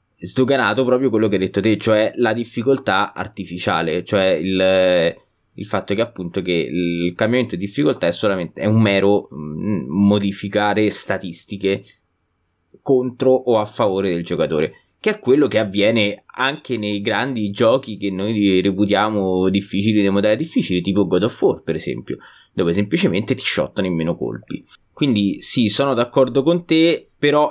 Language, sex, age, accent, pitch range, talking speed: Italian, male, 20-39, native, 95-125 Hz, 150 wpm